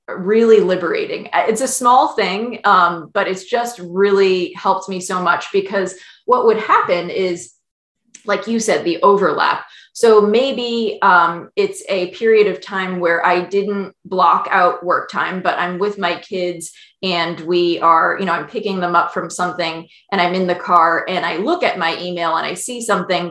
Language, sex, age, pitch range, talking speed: English, female, 20-39, 175-225 Hz, 185 wpm